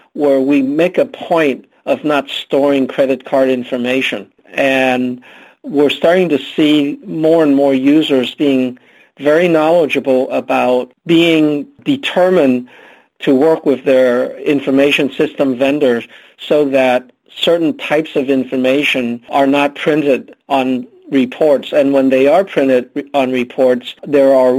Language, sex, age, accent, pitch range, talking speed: English, male, 50-69, American, 130-150 Hz, 130 wpm